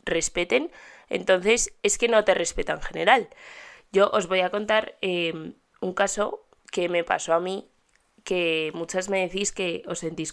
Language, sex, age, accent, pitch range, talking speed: Spanish, female, 20-39, Spanish, 175-240 Hz, 165 wpm